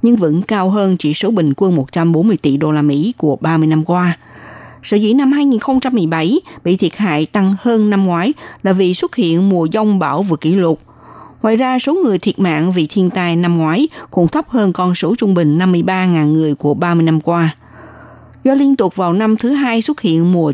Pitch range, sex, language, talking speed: 165-225 Hz, female, Vietnamese, 210 wpm